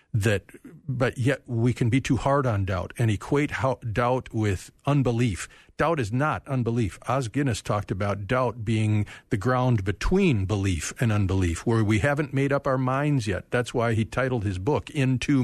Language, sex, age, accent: English, male, 50-69, American